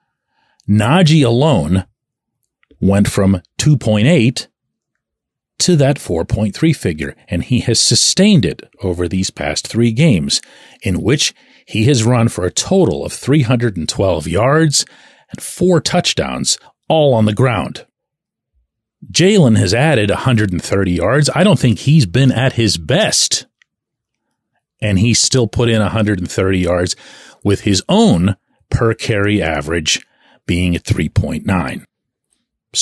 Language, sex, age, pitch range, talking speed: English, male, 40-59, 100-155 Hz, 120 wpm